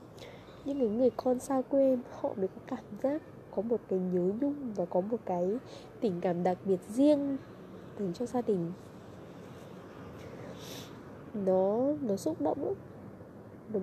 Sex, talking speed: female, 150 wpm